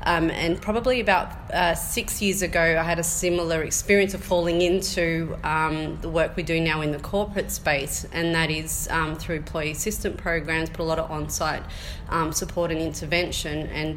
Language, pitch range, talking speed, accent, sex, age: English, 155-170 Hz, 195 wpm, Australian, female, 30-49